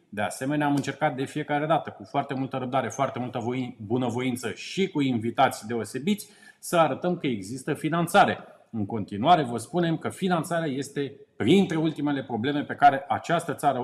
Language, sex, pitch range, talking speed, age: Romanian, male, 130-170 Hz, 160 wpm, 30-49